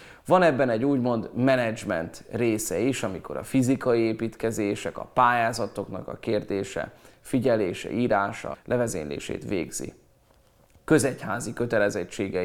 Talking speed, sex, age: 100 wpm, male, 30-49